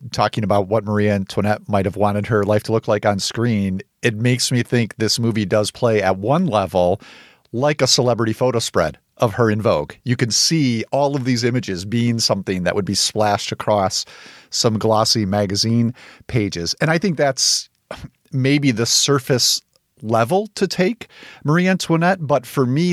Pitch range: 105-135 Hz